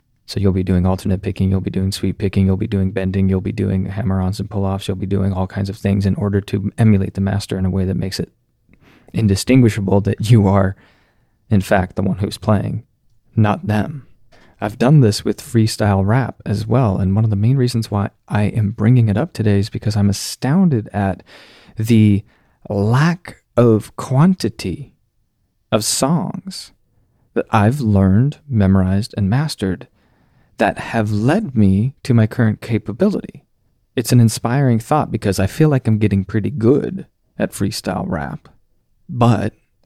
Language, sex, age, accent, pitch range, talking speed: English, male, 30-49, American, 100-120 Hz, 170 wpm